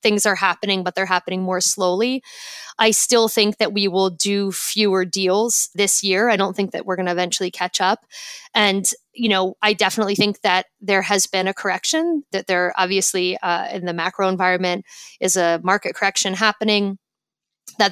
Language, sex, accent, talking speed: English, female, American, 185 wpm